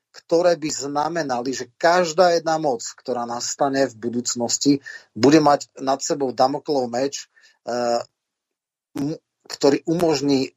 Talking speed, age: 110 wpm, 40-59